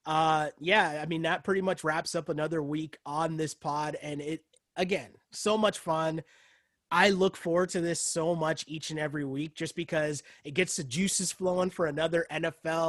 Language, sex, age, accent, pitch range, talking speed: English, male, 20-39, American, 155-195 Hz, 190 wpm